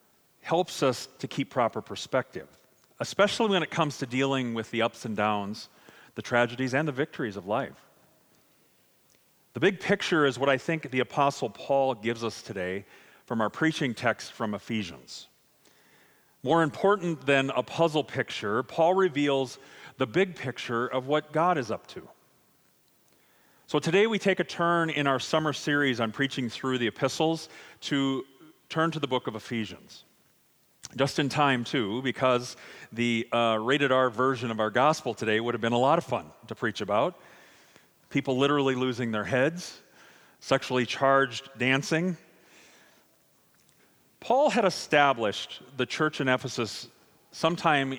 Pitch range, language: 120-150 Hz, English